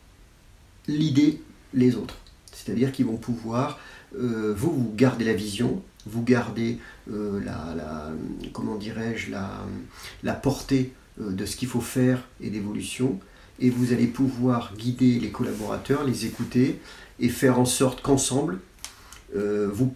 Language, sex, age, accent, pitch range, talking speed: French, male, 40-59, French, 100-125 Hz, 125 wpm